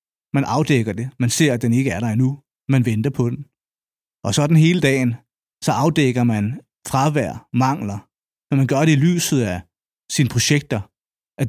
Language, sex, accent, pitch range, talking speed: Danish, male, native, 120-140 Hz, 185 wpm